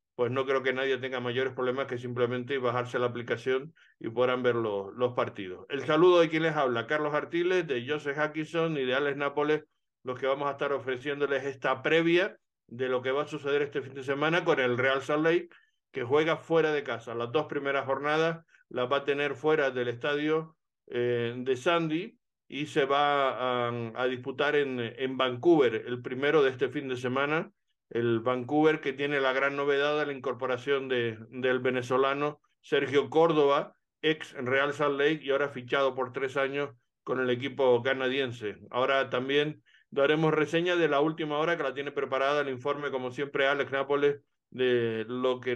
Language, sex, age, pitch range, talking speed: Spanish, male, 50-69, 125-150 Hz, 185 wpm